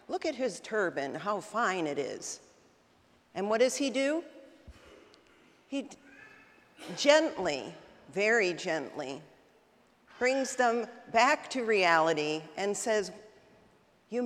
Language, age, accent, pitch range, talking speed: English, 50-69, American, 195-255 Hz, 110 wpm